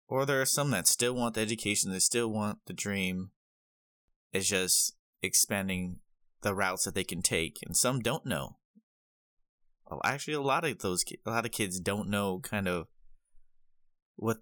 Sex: male